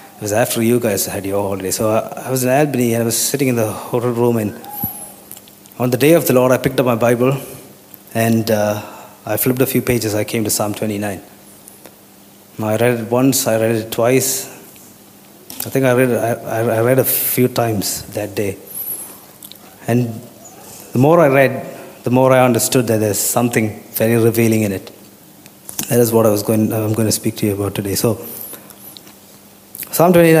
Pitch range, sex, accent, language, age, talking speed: 110-125 Hz, male, native, Malayalam, 30-49, 195 wpm